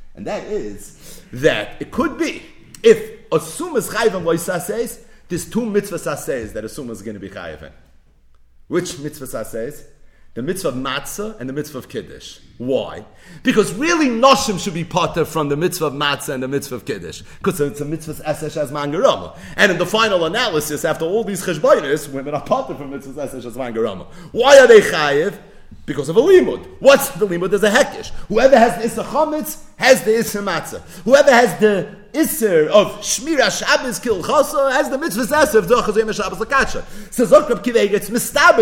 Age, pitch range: 40-59, 175-245 Hz